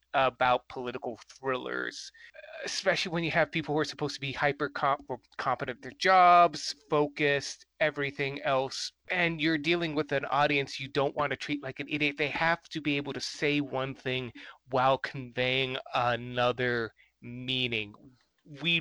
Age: 30-49